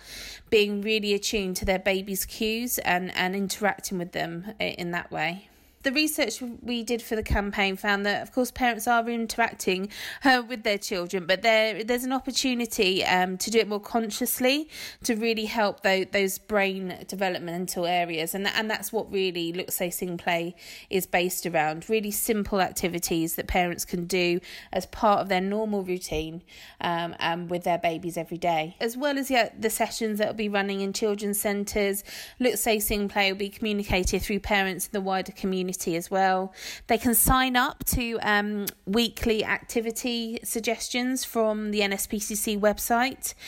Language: English